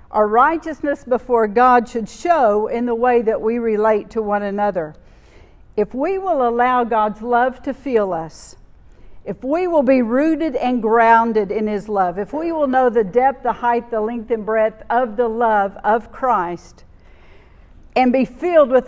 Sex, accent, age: female, American, 50-69